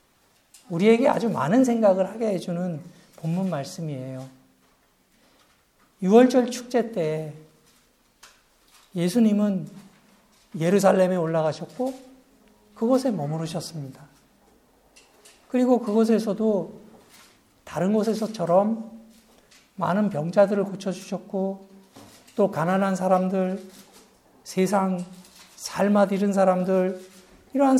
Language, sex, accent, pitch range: Korean, male, native, 185-225 Hz